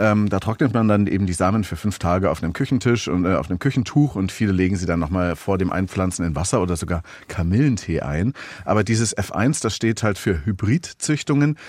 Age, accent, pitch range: 40-59, German, 90-110 Hz